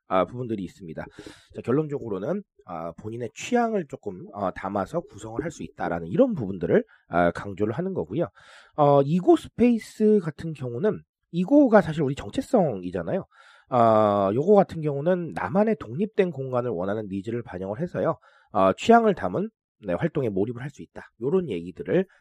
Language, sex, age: Korean, male, 30-49